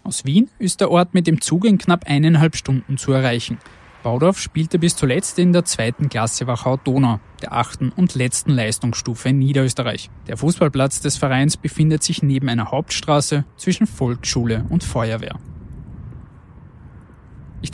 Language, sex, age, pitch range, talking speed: German, male, 20-39, 120-165 Hz, 150 wpm